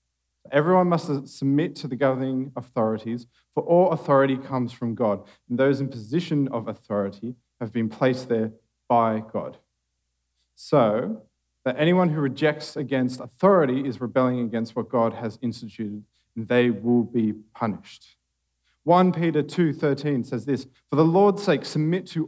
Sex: male